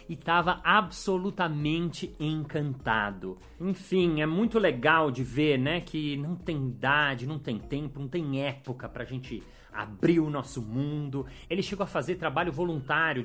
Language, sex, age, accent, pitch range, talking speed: Portuguese, male, 40-59, Brazilian, 135-190 Hz, 155 wpm